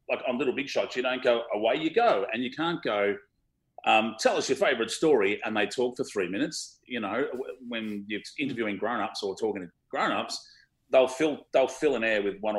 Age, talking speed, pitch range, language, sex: 30-49, 225 wpm, 110-175 Hz, English, male